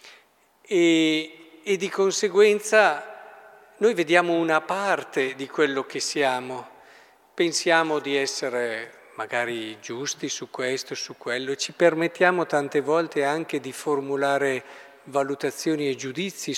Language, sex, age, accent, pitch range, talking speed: Italian, male, 50-69, native, 140-190 Hz, 110 wpm